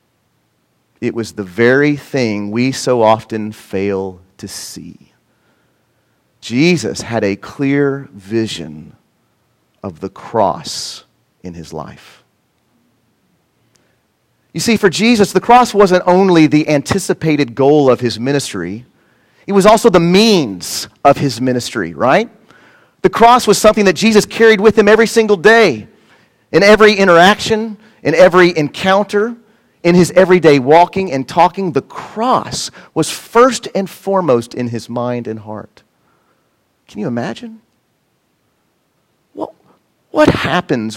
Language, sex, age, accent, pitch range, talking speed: English, male, 40-59, American, 115-190 Hz, 125 wpm